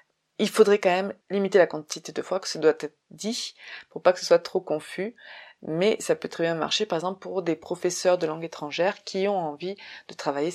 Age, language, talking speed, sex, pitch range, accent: 20-39, French, 230 wpm, female, 165-205 Hz, French